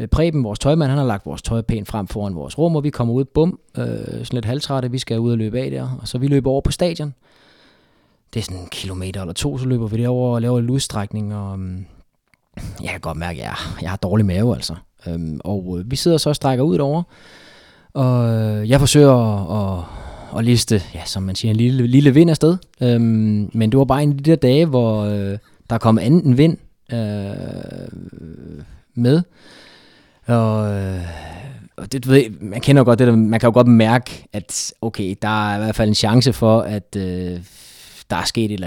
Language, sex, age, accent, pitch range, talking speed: Danish, male, 20-39, native, 100-130 Hz, 210 wpm